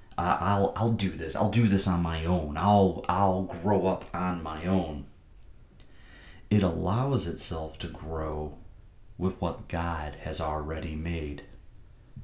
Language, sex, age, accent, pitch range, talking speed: English, male, 30-49, American, 85-105 Hz, 135 wpm